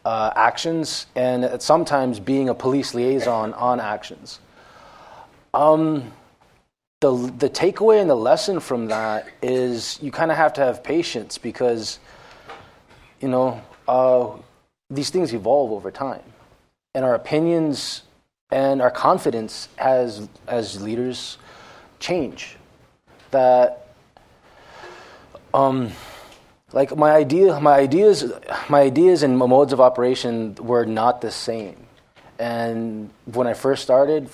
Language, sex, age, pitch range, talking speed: English, male, 20-39, 115-145 Hz, 120 wpm